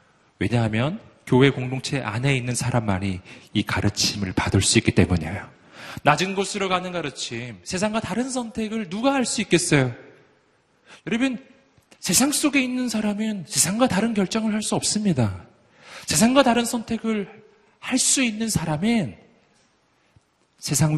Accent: native